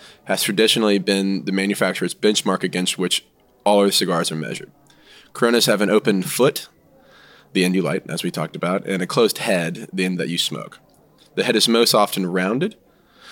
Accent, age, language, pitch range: American, 20-39, English, 95-110 Hz